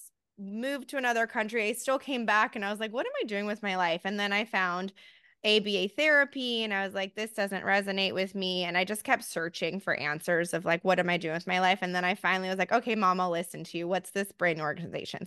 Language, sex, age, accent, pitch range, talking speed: English, female, 20-39, American, 180-225 Hz, 260 wpm